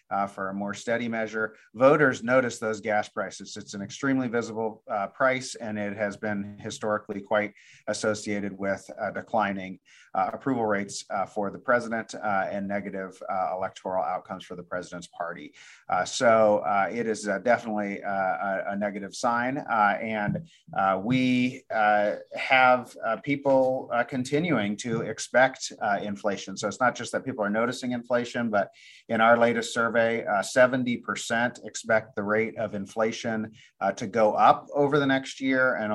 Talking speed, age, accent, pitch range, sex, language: 170 wpm, 30-49, American, 100-120 Hz, male, English